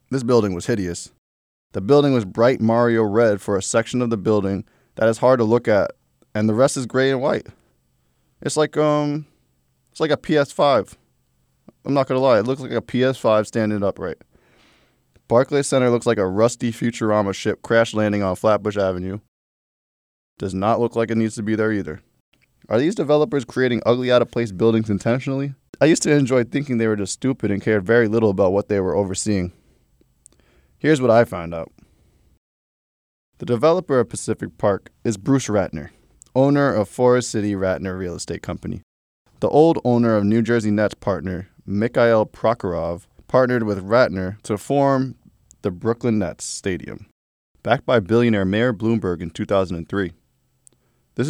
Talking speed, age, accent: 170 wpm, 20-39, American